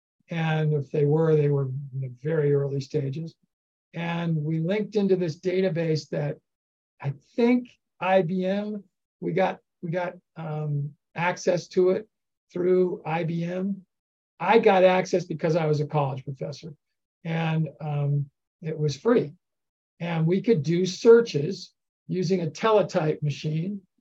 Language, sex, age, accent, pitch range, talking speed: English, male, 50-69, American, 150-190 Hz, 135 wpm